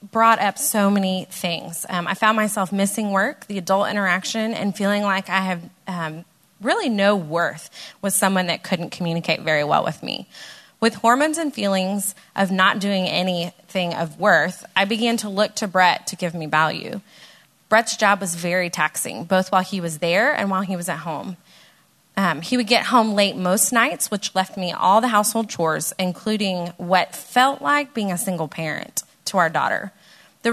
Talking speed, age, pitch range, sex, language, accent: 185 wpm, 20-39, 175-210 Hz, female, English, American